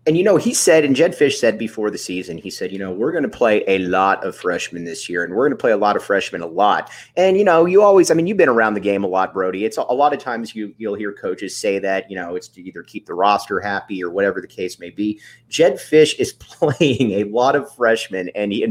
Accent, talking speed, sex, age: American, 290 wpm, male, 30-49